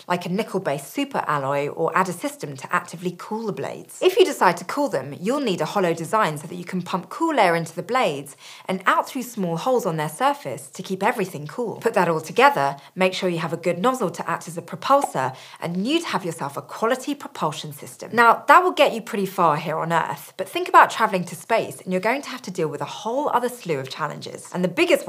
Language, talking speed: English, 245 wpm